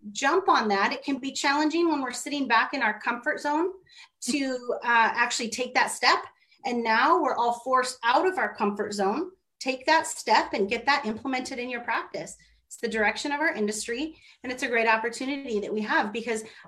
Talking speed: 200 wpm